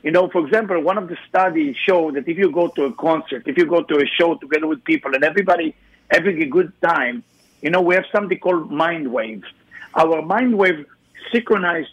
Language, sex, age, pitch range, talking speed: English, male, 50-69, 175-235 Hz, 215 wpm